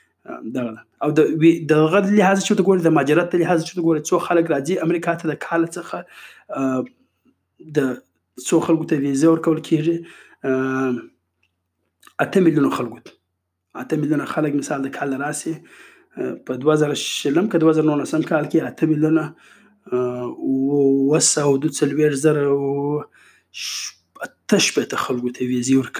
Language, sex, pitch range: Urdu, male, 130-160 Hz